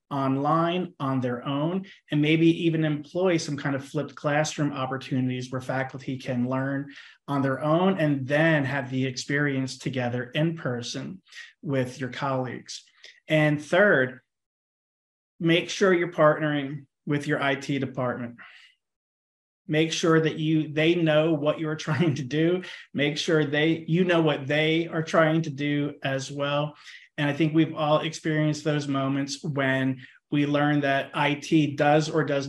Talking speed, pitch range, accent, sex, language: 150 wpm, 135-155 Hz, American, male, English